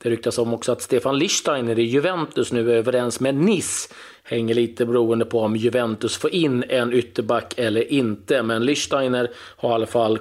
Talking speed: 190 wpm